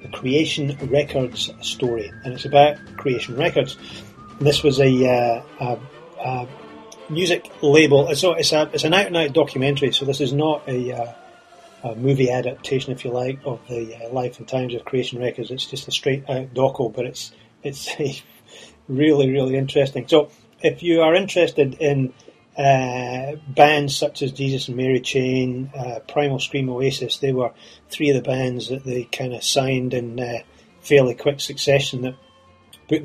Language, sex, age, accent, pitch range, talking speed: English, male, 30-49, British, 125-145 Hz, 175 wpm